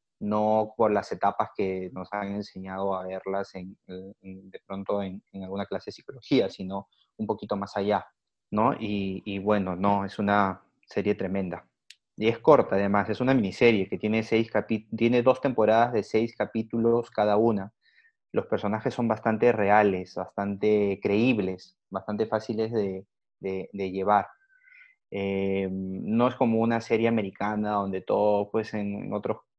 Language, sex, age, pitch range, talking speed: Spanish, male, 30-49, 100-115 Hz, 160 wpm